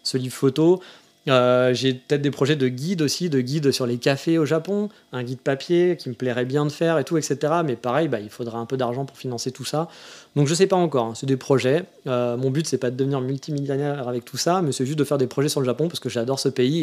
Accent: French